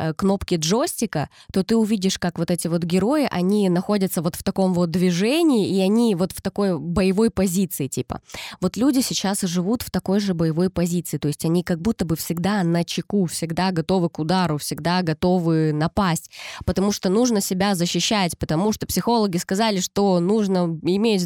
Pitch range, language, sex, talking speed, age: 160-195 Hz, Russian, female, 175 wpm, 20-39